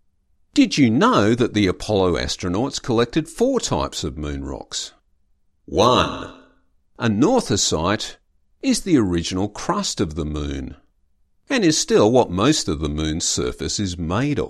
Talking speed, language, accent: 135 wpm, English, Australian